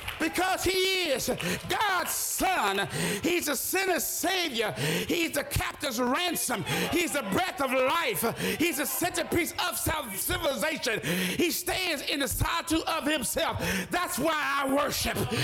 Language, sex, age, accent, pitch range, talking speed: English, male, 50-69, American, 280-355 Hz, 130 wpm